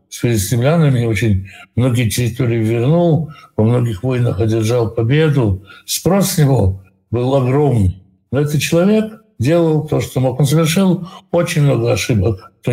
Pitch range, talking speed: 115-155 Hz, 135 wpm